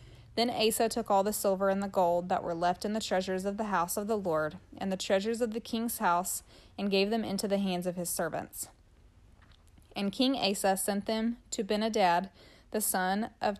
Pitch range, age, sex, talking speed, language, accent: 185-220 Hz, 20-39, female, 210 wpm, English, American